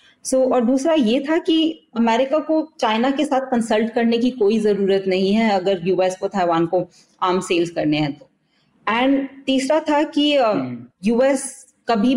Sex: female